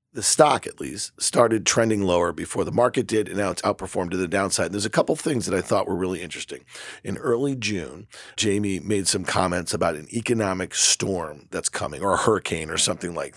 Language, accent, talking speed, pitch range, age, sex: English, American, 215 wpm, 95-115 Hz, 40-59, male